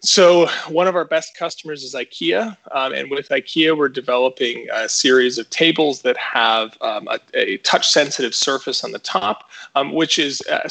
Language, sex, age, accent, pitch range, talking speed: English, male, 20-39, American, 135-195 Hz, 180 wpm